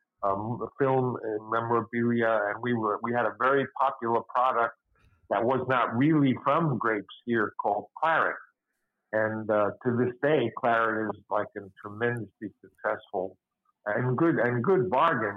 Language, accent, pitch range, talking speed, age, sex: English, American, 115-135 Hz, 150 wpm, 50-69, male